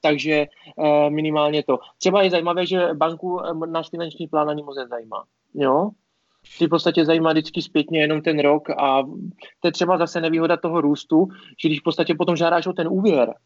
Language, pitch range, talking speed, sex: Czech, 150-180 Hz, 185 wpm, male